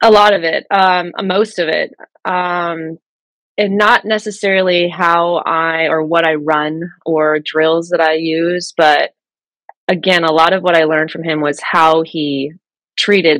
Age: 20-39